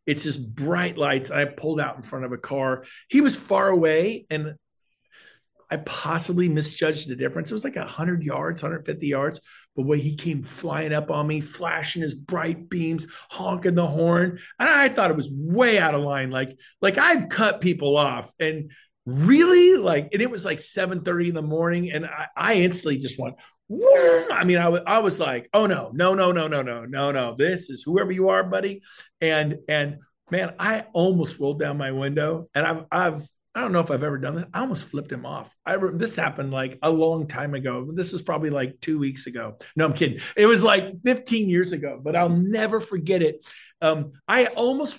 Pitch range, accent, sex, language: 150-195 Hz, American, male, English